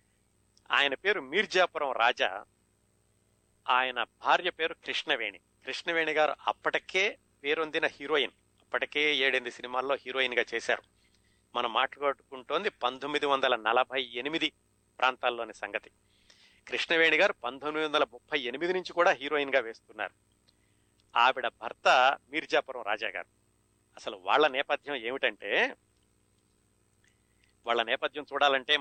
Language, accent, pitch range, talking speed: Telugu, native, 115-150 Hz, 85 wpm